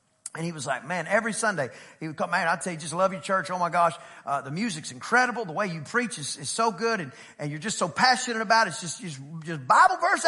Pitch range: 165-255 Hz